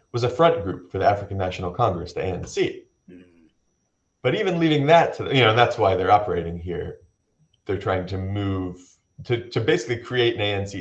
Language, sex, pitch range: English, male, 105-140 Hz